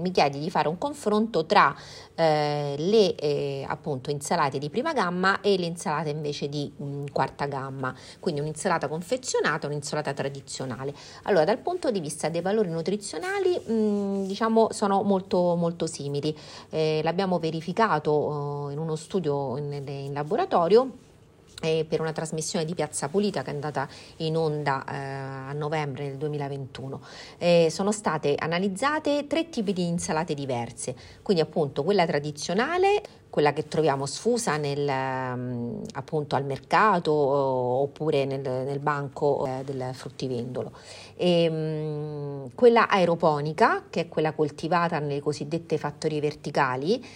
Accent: native